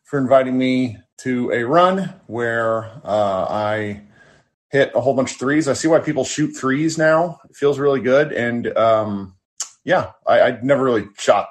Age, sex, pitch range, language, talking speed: 30-49, male, 95-130 Hz, English, 175 wpm